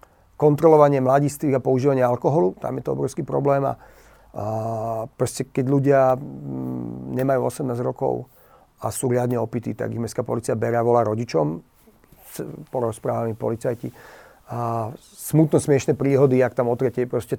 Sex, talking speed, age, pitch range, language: male, 130 wpm, 40-59, 125-150 Hz, Slovak